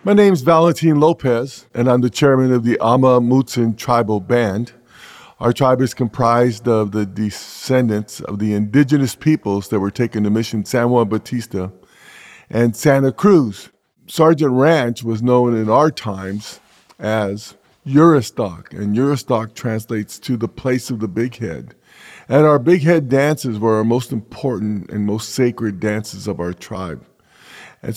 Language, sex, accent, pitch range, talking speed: English, male, American, 110-140 Hz, 155 wpm